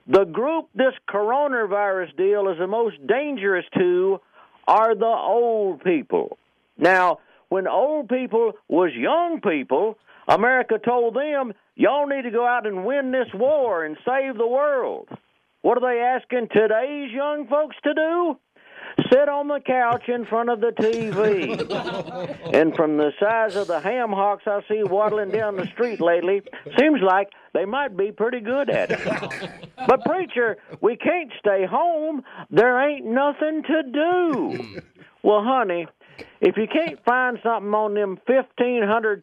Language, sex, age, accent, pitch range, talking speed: English, male, 50-69, American, 205-285 Hz, 155 wpm